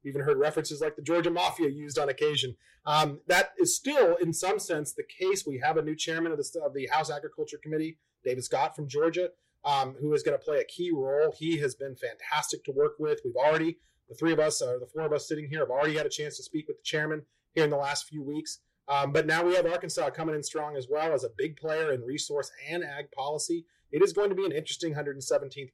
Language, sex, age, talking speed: English, male, 30-49, 250 wpm